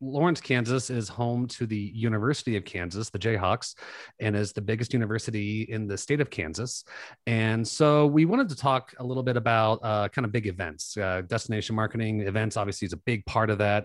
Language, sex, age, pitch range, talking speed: English, male, 30-49, 110-135 Hz, 205 wpm